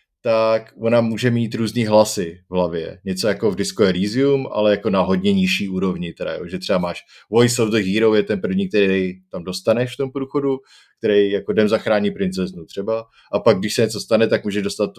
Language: Czech